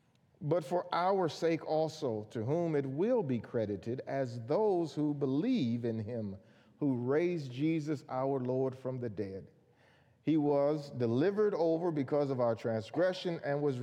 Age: 40-59